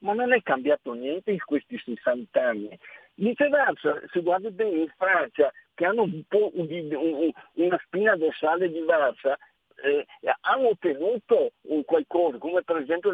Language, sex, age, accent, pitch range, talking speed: Italian, male, 50-69, native, 155-230 Hz, 150 wpm